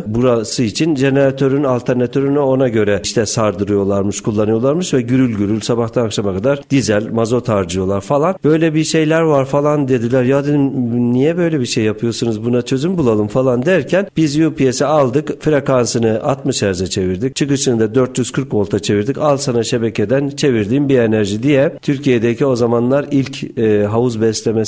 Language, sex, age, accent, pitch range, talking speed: Turkish, male, 50-69, native, 105-135 Hz, 155 wpm